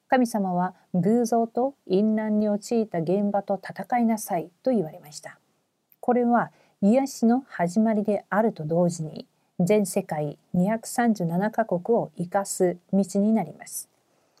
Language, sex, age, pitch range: Korean, female, 40-59, 180-235 Hz